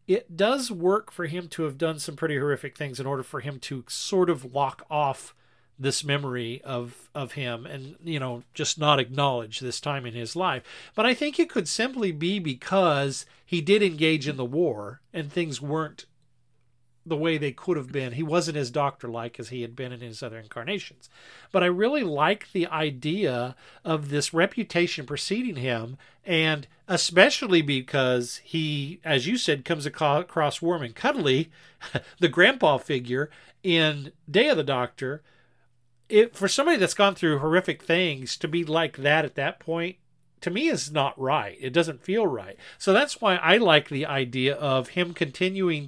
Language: English